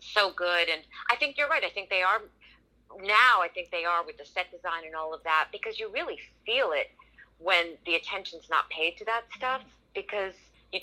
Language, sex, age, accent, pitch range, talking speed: English, female, 40-59, American, 170-250 Hz, 215 wpm